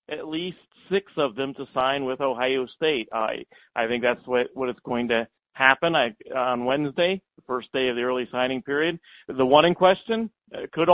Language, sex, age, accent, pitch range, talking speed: English, male, 50-69, American, 125-155 Hz, 200 wpm